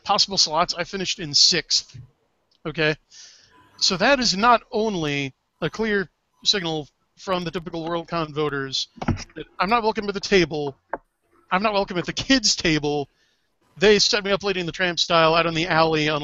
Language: English